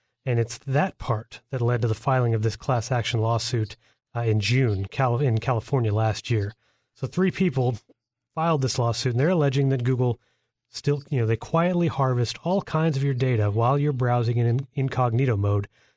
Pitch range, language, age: 115-140 Hz, English, 30-49